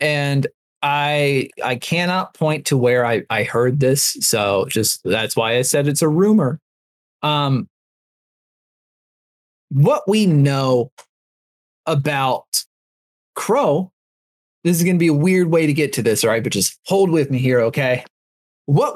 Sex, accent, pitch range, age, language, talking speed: male, American, 130-170 Hz, 30-49, English, 150 wpm